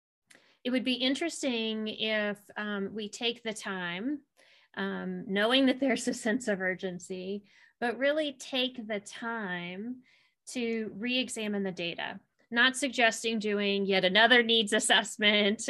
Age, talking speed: 30-49, 130 wpm